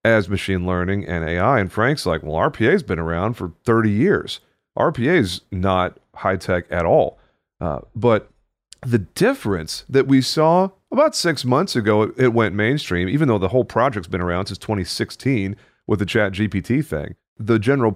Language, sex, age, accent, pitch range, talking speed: English, male, 40-59, American, 95-130 Hz, 165 wpm